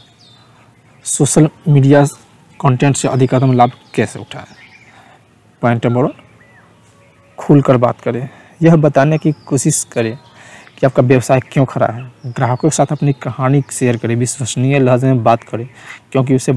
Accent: native